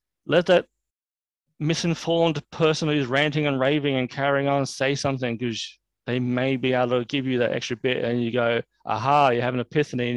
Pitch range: 120-140 Hz